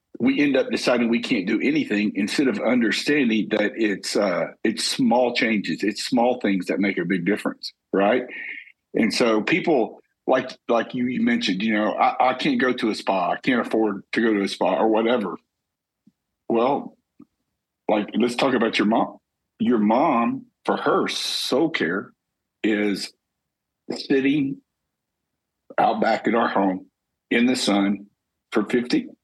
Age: 50-69